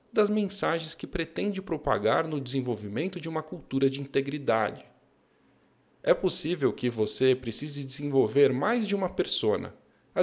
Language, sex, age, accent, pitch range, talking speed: Portuguese, male, 40-59, Brazilian, 120-165 Hz, 135 wpm